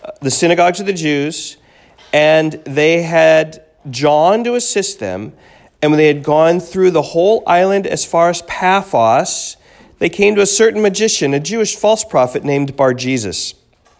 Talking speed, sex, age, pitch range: 160 wpm, male, 40-59, 145-185 Hz